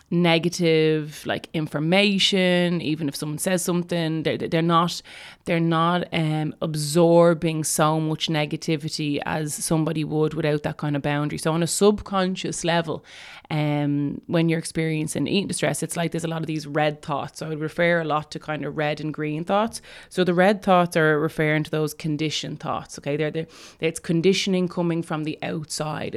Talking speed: 180 wpm